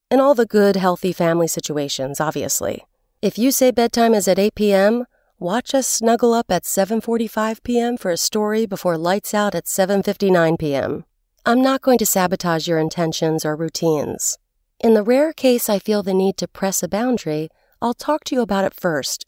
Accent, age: American, 40-59